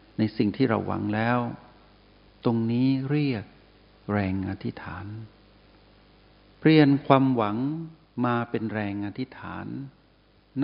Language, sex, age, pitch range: Thai, male, 60-79, 105-120 Hz